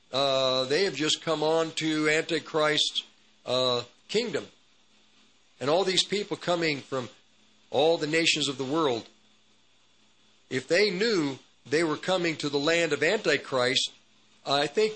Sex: male